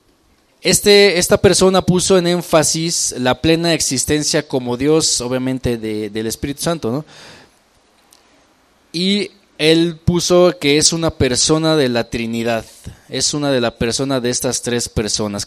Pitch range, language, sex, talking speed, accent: 120-160 Hz, English, male, 130 wpm, Mexican